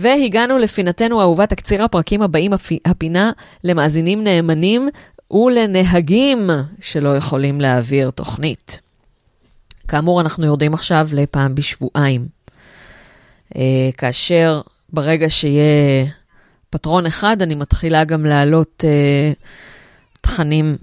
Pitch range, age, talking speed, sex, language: 145-180 Hz, 30-49, 90 wpm, female, Hebrew